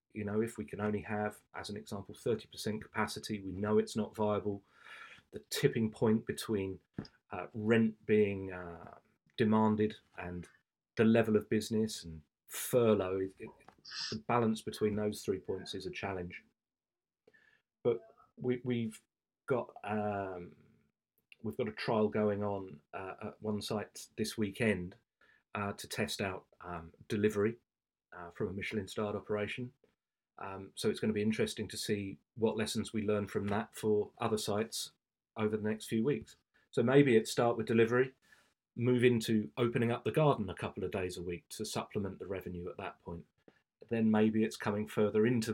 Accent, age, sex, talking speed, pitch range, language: British, 40-59, male, 165 wpm, 100-110 Hz, English